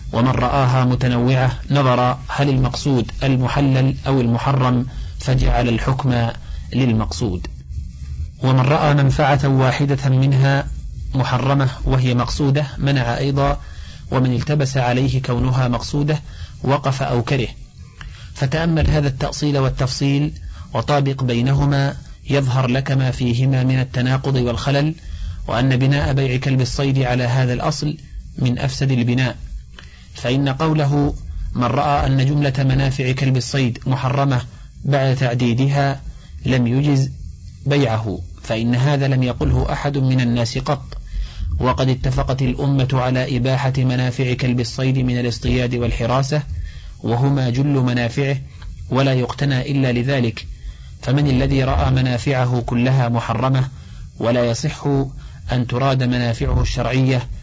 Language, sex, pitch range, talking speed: Arabic, male, 120-135 Hz, 110 wpm